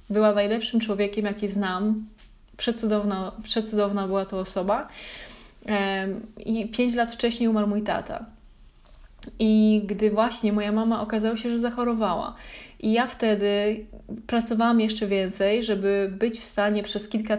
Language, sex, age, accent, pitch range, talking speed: Polish, female, 20-39, native, 200-225 Hz, 130 wpm